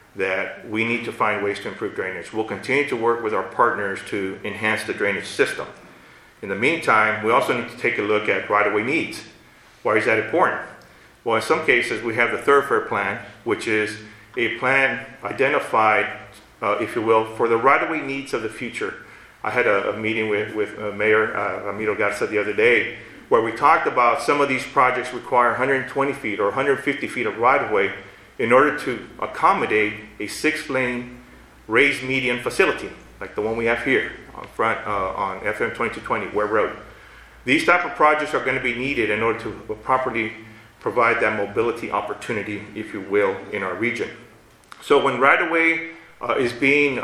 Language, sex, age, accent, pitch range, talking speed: English, male, 40-59, American, 110-135 Hz, 190 wpm